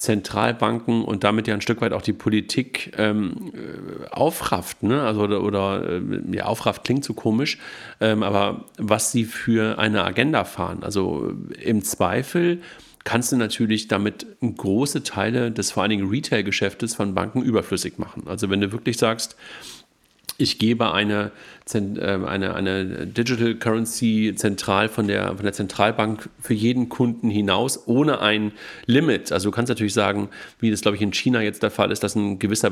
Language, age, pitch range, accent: German, 40-59, 100-115 Hz, German